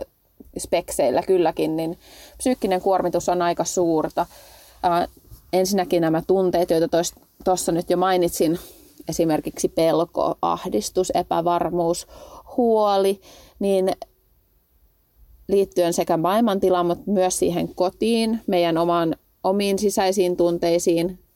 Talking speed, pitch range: 100 wpm, 170-195 Hz